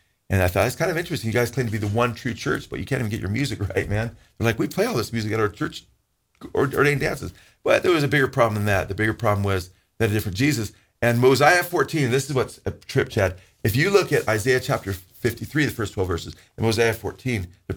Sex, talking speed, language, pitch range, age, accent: male, 260 wpm, English, 105-125 Hz, 40-59, American